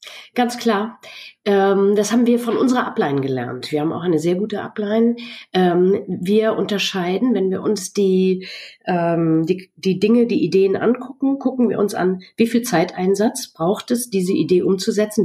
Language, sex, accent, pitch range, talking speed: German, female, German, 185-240 Hz, 155 wpm